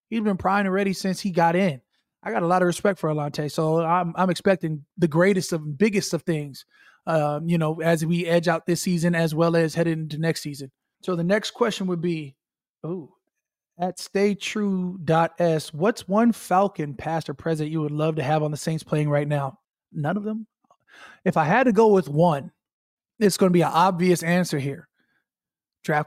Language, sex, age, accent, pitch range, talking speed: English, male, 20-39, American, 165-215 Hz, 200 wpm